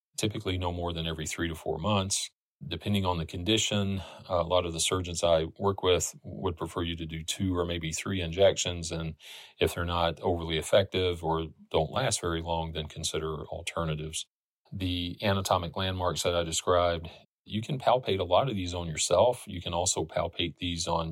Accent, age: American, 40-59